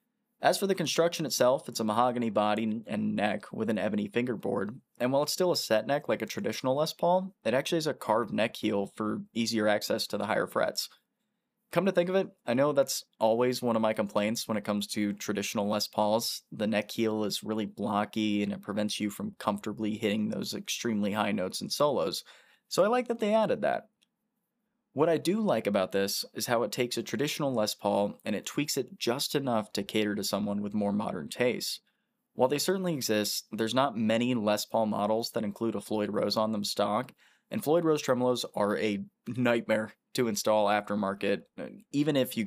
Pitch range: 105-135 Hz